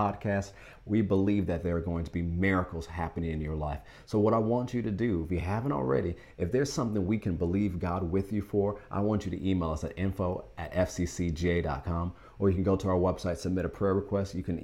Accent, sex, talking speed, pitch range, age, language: American, male, 240 wpm, 85-110 Hz, 30-49, English